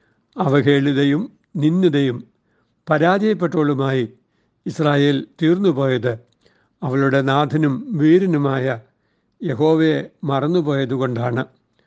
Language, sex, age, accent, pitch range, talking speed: Malayalam, male, 60-79, native, 135-165 Hz, 50 wpm